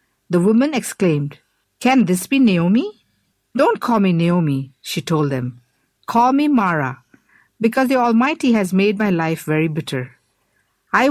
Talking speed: 145 wpm